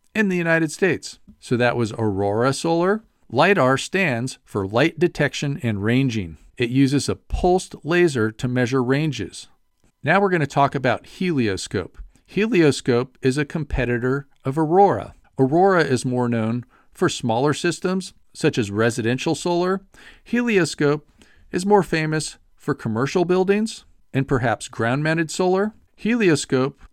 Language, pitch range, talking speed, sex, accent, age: English, 120-165 Hz, 130 wpm, male, American, 50-69